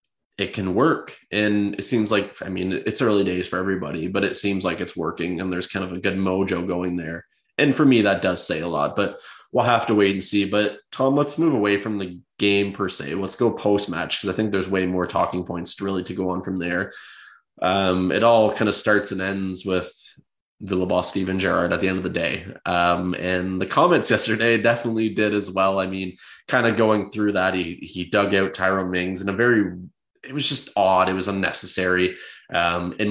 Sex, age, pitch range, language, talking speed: male, 20-39, 90-105 Hz, English, 230 wpm